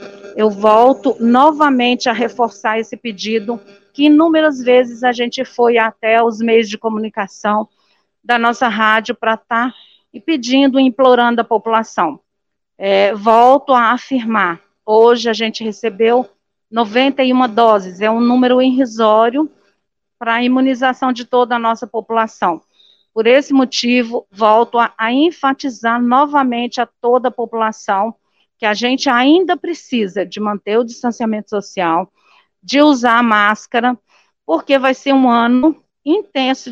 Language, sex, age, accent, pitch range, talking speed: Portuguese, female, 50-69, Brazilian, 225-260 Hz, 135 wpm